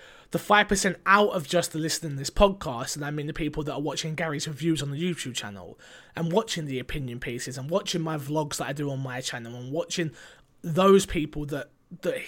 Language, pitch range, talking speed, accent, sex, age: English, 140-175 Hz, 220 wpm, British, male, 20-39